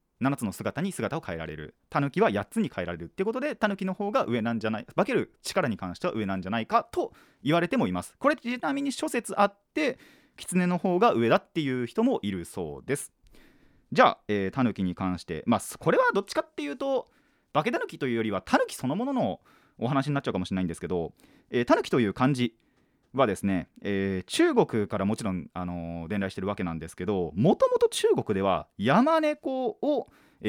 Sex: male